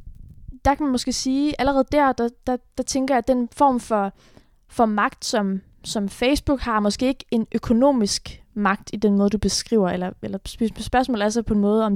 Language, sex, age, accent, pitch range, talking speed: Danish, female, 20-39, native, 210-250 Hz, 205 wpm